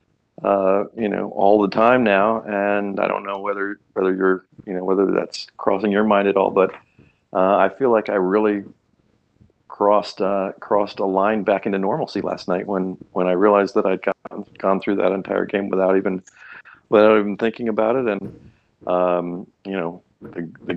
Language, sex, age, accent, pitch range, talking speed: English, male, 40-59, American, 95-110 Hz, 190 wpm